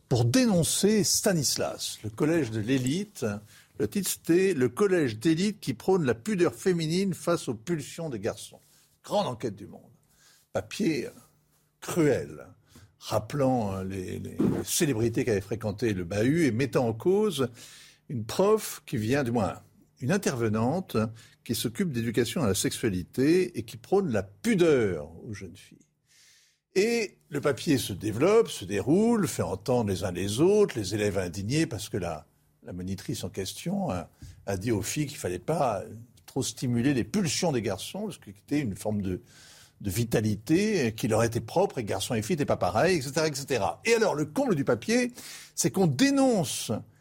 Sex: male